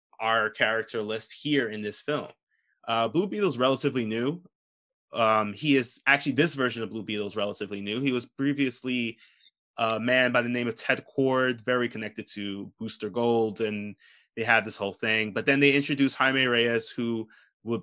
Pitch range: 110-135 Hz